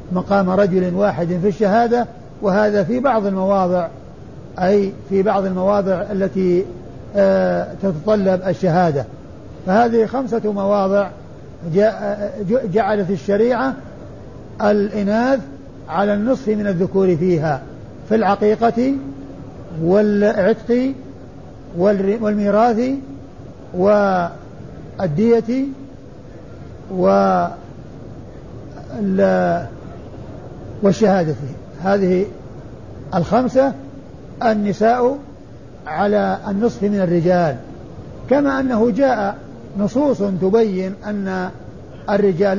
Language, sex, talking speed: Arabic, male, 70 wpm